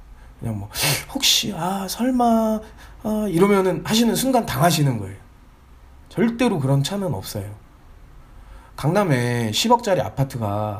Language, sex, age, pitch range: Korean, male, 20-39, 105-170 Hz